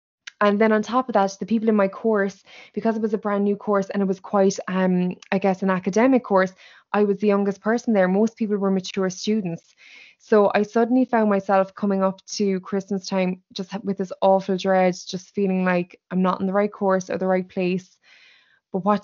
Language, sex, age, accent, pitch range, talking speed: English, female, 20-39, Irish, 190-215 Hz, 220 wpm